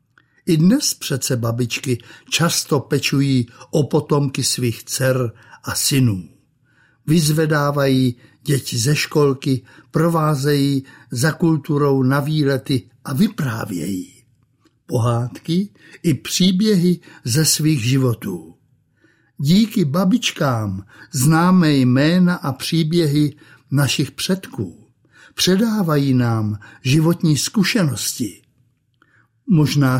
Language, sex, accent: Czech, male, native